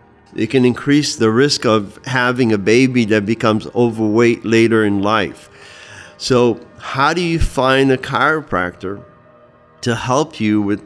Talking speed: 145 wpm